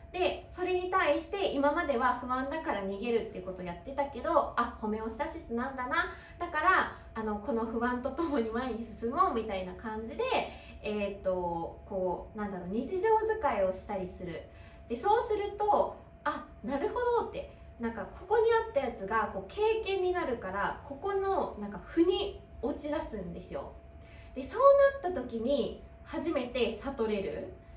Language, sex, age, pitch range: Japanese, female, 20-39, 215-355 Hz